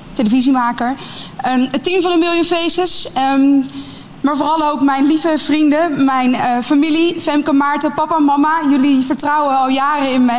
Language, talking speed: Dutch, 160 wpm